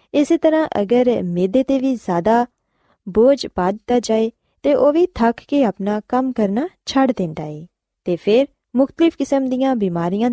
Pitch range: 190-260 Hz